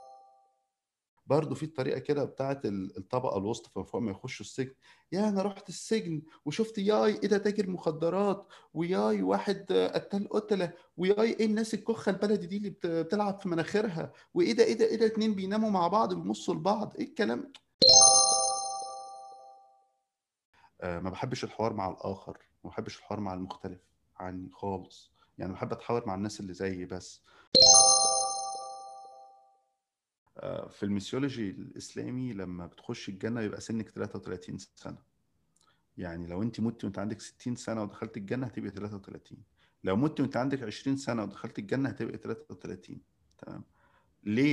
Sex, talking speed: male, 145 wpm